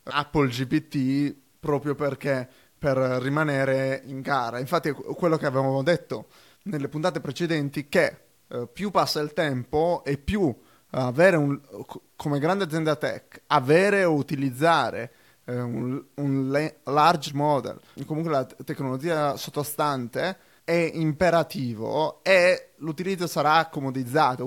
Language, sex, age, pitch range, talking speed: Italian, male, 20-39, 135-165 Hz, 115 wpm